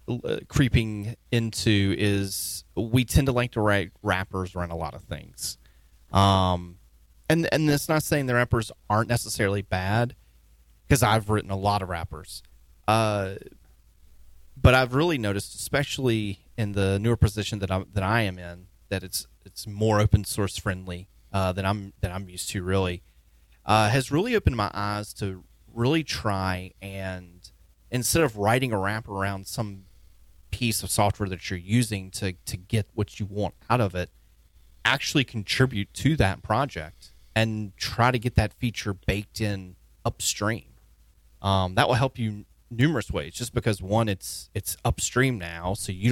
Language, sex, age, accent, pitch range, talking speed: English, male, 30-49, American, 90-115 Hz, 165 wpm